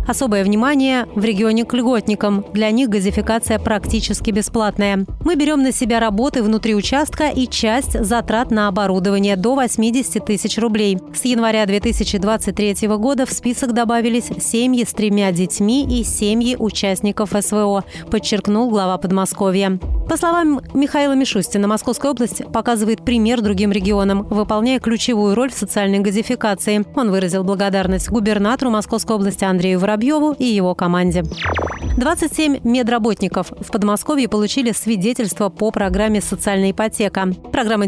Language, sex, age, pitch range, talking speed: Russian, female, 30-49, 200-240 Hz, 130 wpm